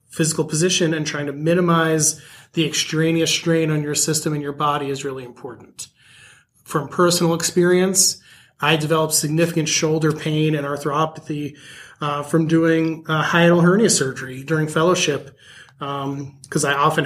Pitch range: 145-165 Hz